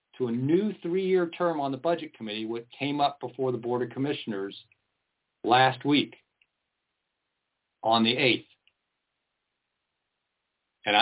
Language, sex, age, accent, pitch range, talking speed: English, male, 50-69, American, 110-145 Hz, 125 wpm